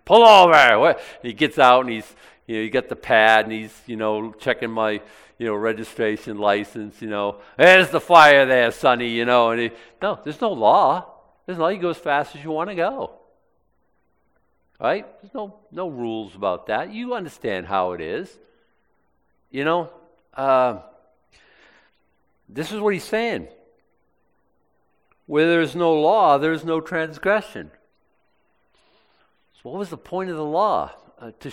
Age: 50-69